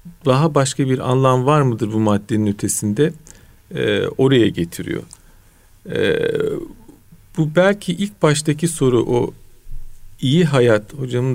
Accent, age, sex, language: native, 50-69, male, Turkish